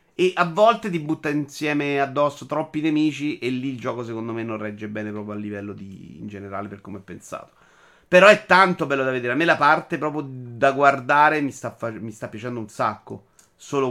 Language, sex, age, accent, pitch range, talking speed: Italian, male, 30-49, native, 105-120 Hz, 205 wpm